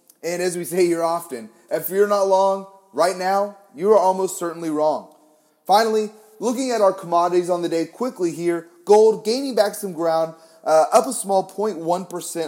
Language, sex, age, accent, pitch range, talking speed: English, male, 30-49, American, 160-200 Hz, 190 wpm